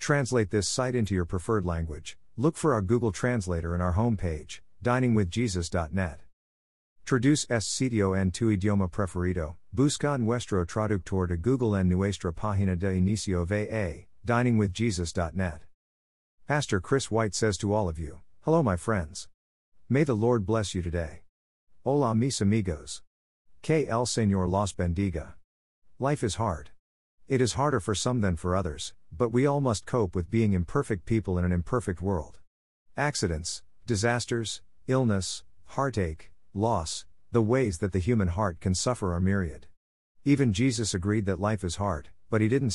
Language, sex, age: English, male, 50-69